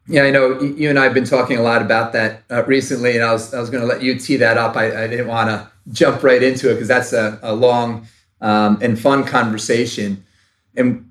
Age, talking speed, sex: 30-49, 250 wpm, male